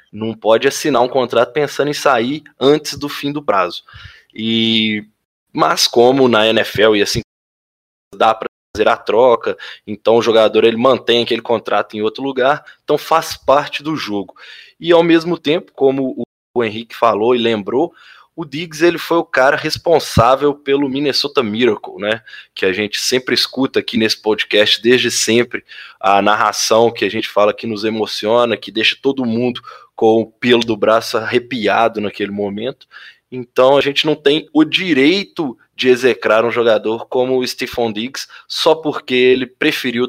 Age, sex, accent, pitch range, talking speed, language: 20-39, male, Brazilian, 110-145 Hz, 165 wpm, Portuguese